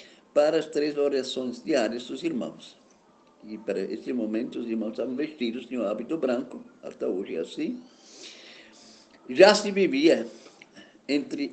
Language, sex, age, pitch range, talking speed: Portuguese, male, 50-69, 120-175 Hz, 140 wpm